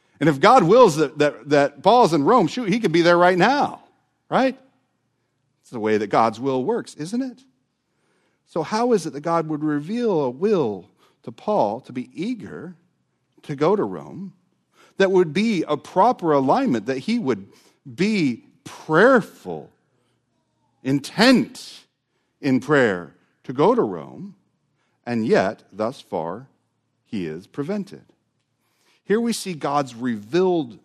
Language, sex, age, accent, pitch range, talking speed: English, male, 50-69, American, 130-190 Hz, 145 wpm